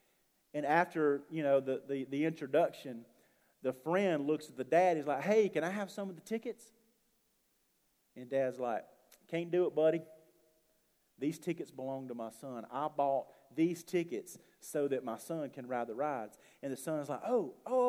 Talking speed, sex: 185 wpm, male